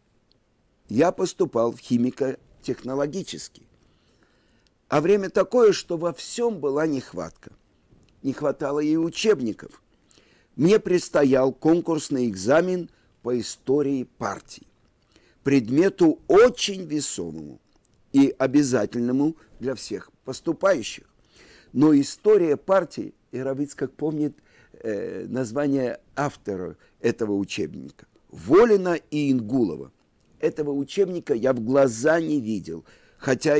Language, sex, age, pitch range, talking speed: Russian, male, 50-69, 120-170 Hz, 95 wpm